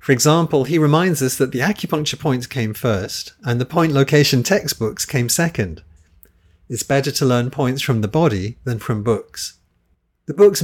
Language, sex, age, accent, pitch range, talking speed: English, male, 40-59, British, 105-140 Hz, 175 wpm